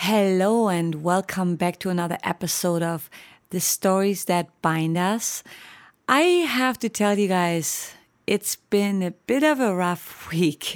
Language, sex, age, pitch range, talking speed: English, female, 30-49, 155-195 Hz, 150 wpm